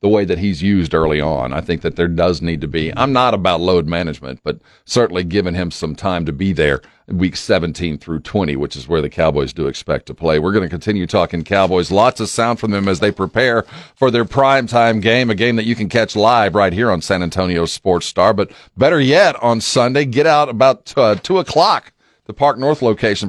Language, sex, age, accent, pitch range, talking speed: English, male, 40-59, American, 95-145 Hz, 230 wpm